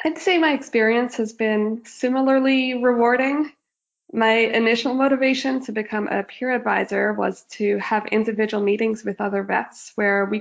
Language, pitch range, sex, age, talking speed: English, 195-225 Hz, female, 20-39, 150 wpm